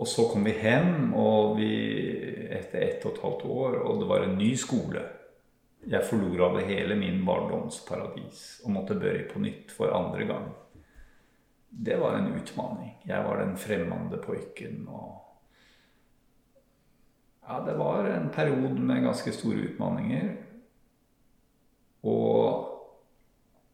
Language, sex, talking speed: Swedish, male, 130 wpm